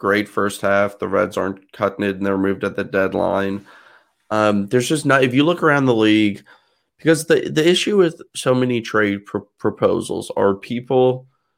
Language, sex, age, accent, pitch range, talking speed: English, male, 30-49, American, 100-125 Hz, 180 wpm